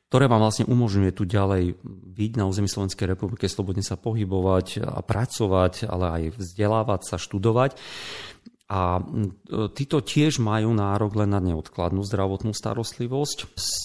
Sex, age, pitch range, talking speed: male, 40-59, 90-105 Hz, 140 wpm